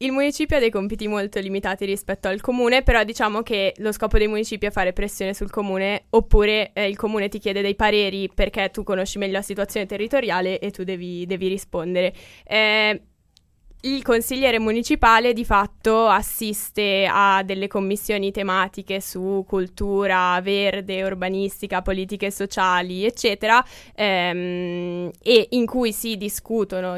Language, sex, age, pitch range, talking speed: Italian, female, 10-29, 195-215 Hz, 145 wpm